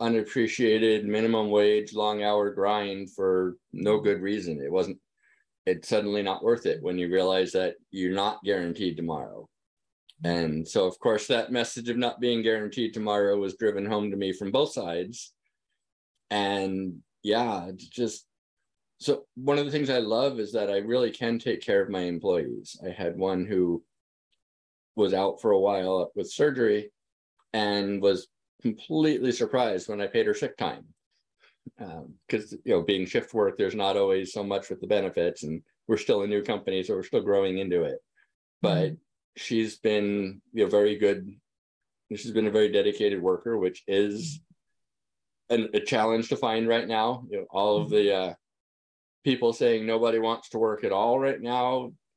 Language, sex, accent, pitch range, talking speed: English, male, American, 100-135 Hz, 170 wpm